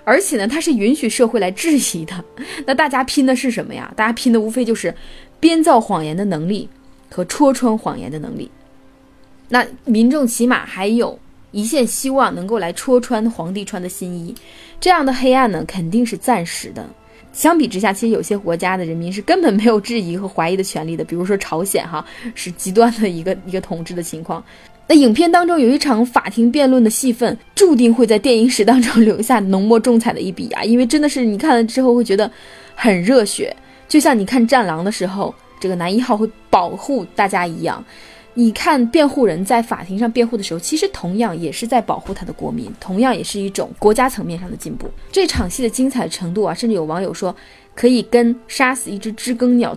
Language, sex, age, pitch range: Chinese, female, 20-39, 195-250 Hz